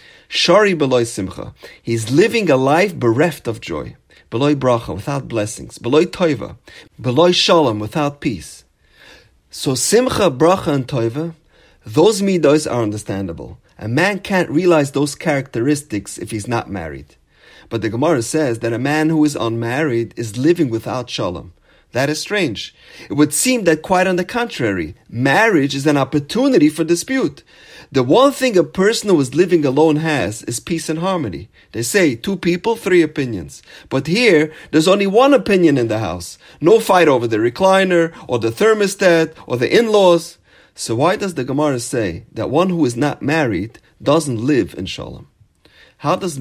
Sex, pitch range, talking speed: male, 115-175 Hz, 165 wpm